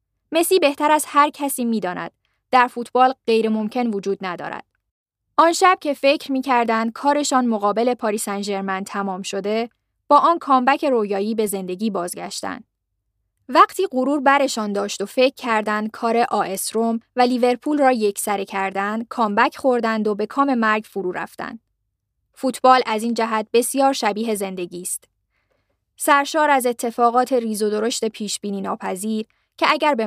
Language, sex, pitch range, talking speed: Persian, female, 205-260 Hz, 140 wpm